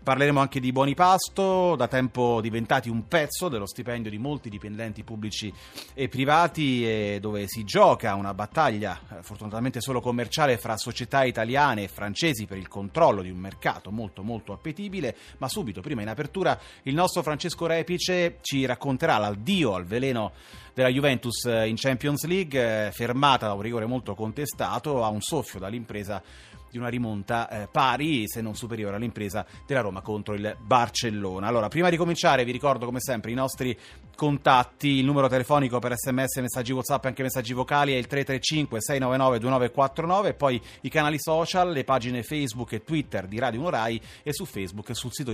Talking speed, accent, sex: 165 wpm, native, male